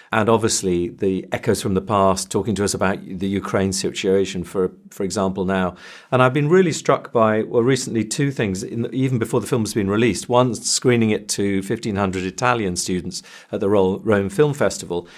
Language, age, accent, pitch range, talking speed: English, 50-69, British, 95-120 Hz, 185 wpm